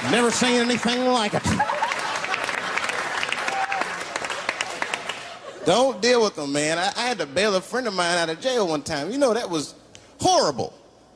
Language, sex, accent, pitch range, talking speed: English, male, American, 185-245 Hz, 155 wpm